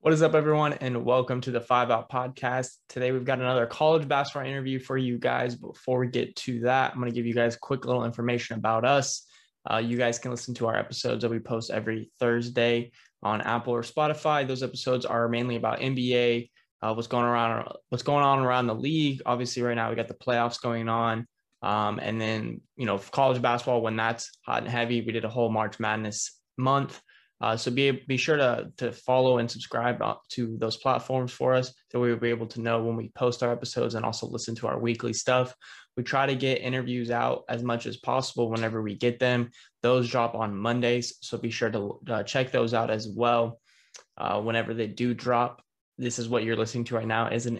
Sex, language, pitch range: male, English, 115-130 Hz